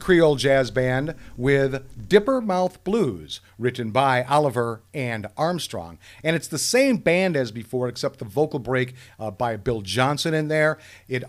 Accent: American